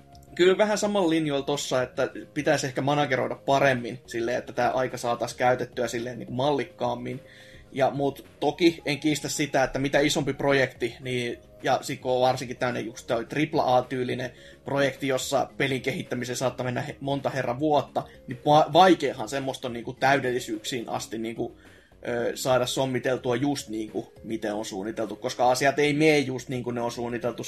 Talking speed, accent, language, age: 160 wpm, native, Finnish, 20-39